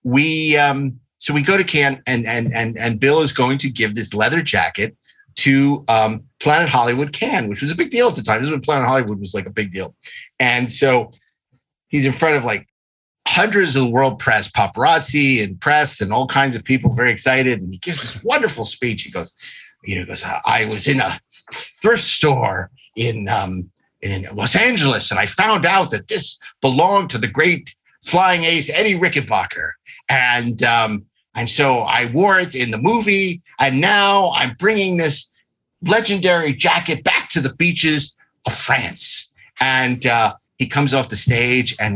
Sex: male